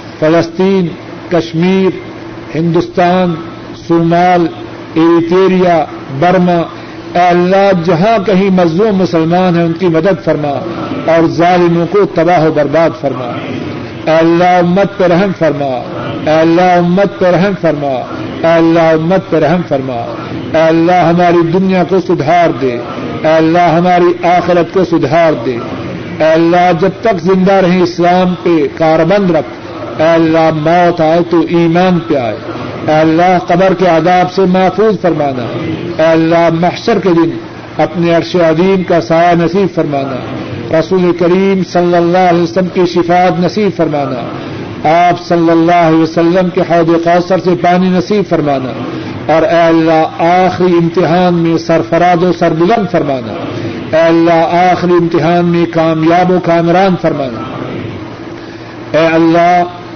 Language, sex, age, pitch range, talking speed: Urdu, male, 50-69, 160-180 Hz, 130 wpm